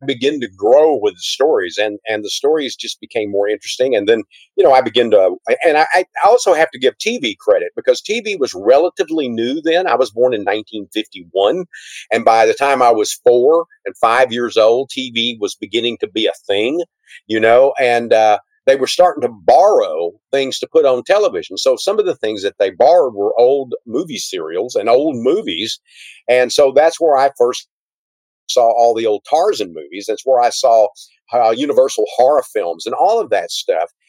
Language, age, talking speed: English, 50-69, 195 wpm